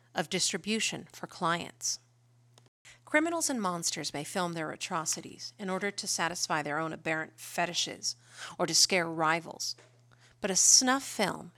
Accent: American